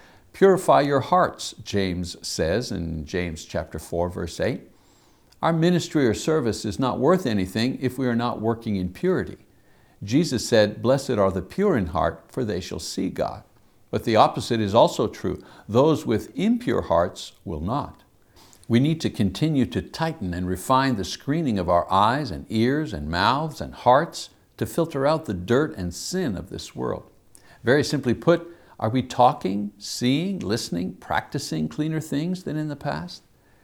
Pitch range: 100-145 Hz